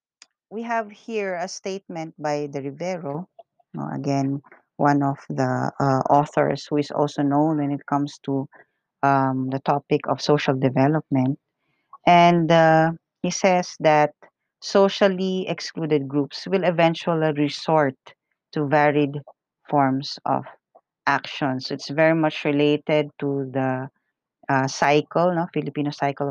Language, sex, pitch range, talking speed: English, female, 140-165 Hz, 125 wpm